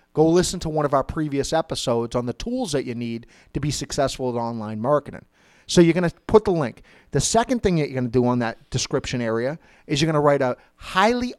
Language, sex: English, male